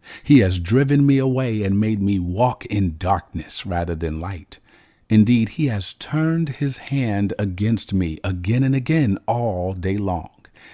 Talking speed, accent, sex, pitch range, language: 155 wpm, American, male, 90-125 Hz, English